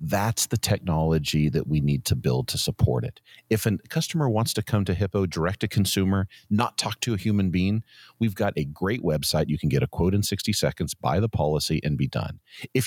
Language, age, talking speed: English, 40-59, 225 wpm